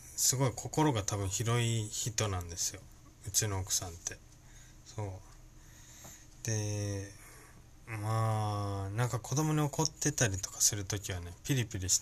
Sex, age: male, 20-39